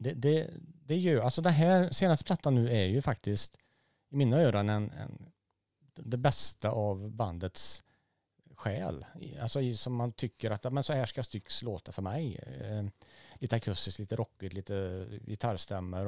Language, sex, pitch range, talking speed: Swedish, male, 100-125 Hz, 165 wpm